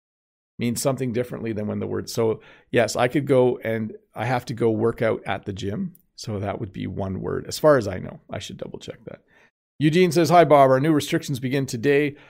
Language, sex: English, male